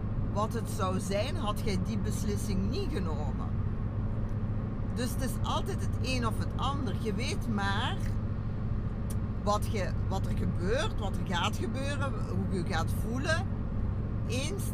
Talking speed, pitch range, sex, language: 145 wpm, 100-110 Hz, female, Dutch